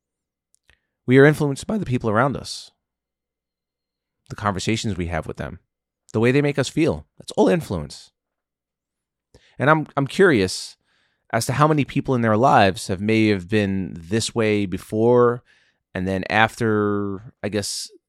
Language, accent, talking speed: English, American, 155 wpm